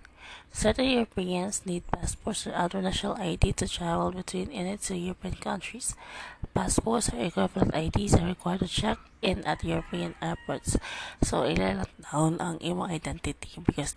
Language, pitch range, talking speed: English, 155-185 Hz, 145 wpm